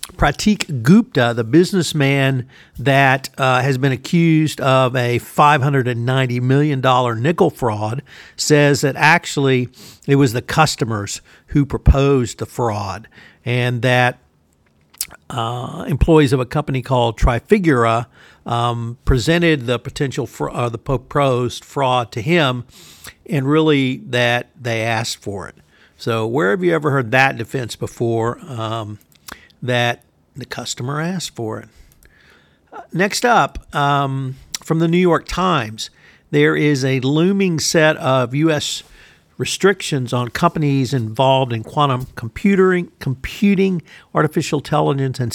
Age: 50-69